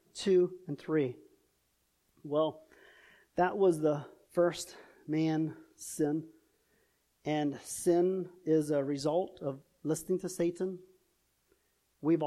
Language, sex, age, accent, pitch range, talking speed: English, male, 40-59, American, 155-220 Hz, 100 wpm